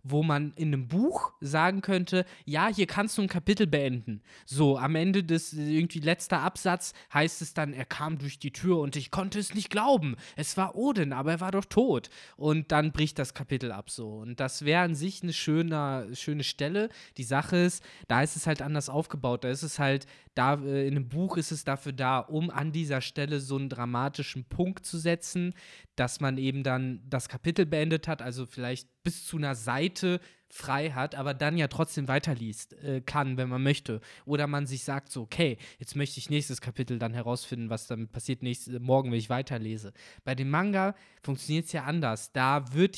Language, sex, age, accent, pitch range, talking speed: German, male, 20-39, German, 130-165 Hz, 205 wpm